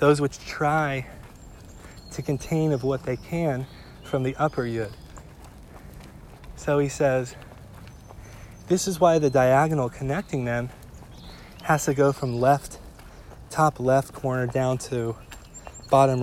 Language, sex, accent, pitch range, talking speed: English, male, American, 110-145 Hz, 125 wpm